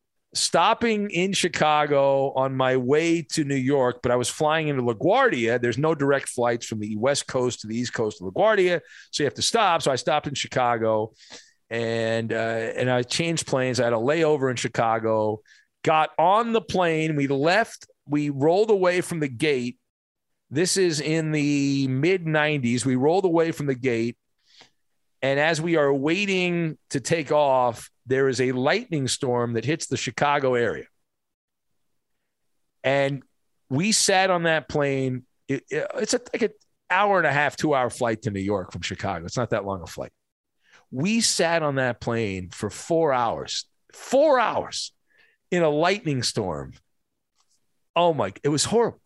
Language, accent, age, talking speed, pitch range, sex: English, American, 40-59, 170 wpm, 120-165 Hz, male